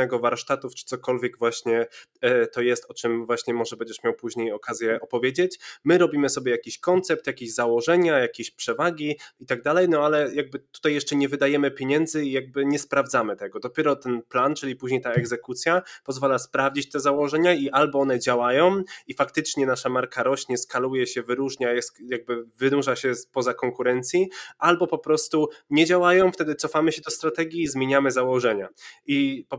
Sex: male